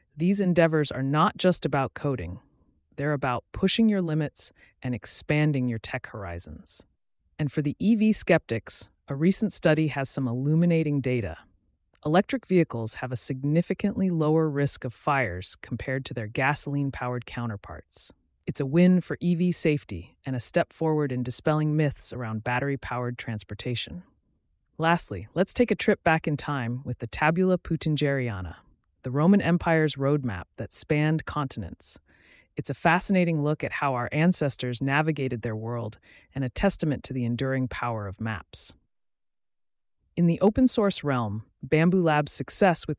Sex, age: female, 30-49